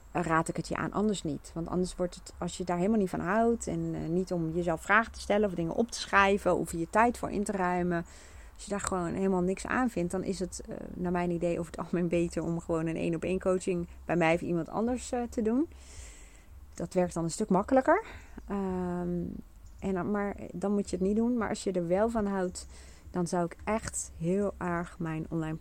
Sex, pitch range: female, 165-195 Hz